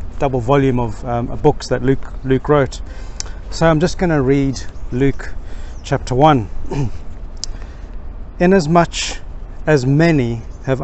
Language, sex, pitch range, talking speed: English, male, 90-145 Hz, 120 wpm